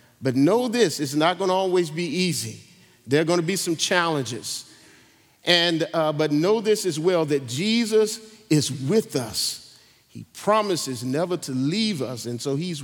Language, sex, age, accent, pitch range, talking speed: English, male, 50-69, American, 170-250 Hz, 170 wpm